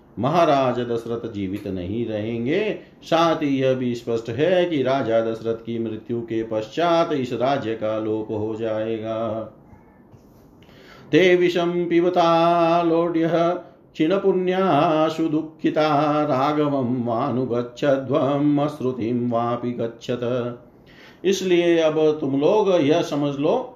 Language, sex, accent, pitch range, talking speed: Hindi, male, native, 115-160 Hz, 100 wpm